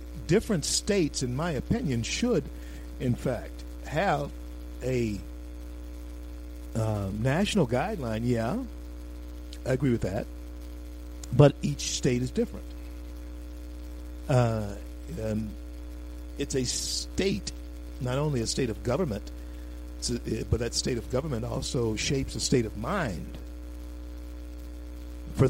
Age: 50-69